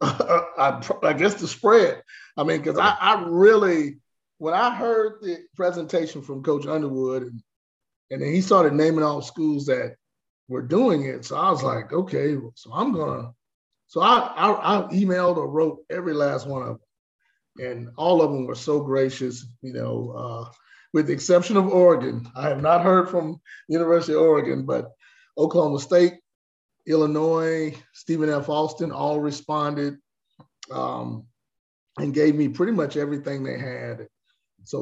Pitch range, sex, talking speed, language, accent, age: 135-170 Hz, male, 160 wpm, English, American, 30-49